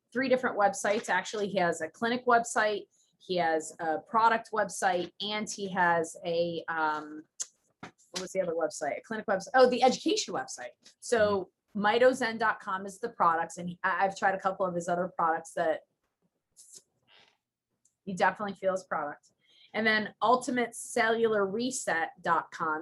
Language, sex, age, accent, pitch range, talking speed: English, female, 30-49, American, 160-205 Hz, 140 wpm